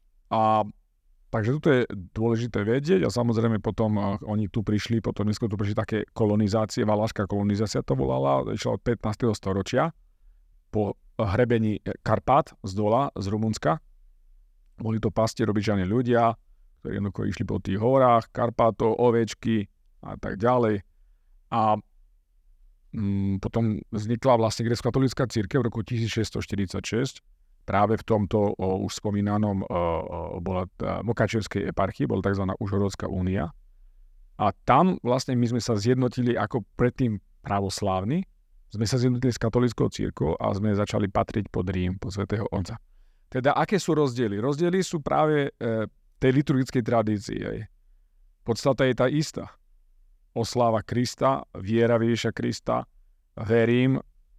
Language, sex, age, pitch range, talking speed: Slovak, male, 40-59, 95-120 Hz, 130 wpm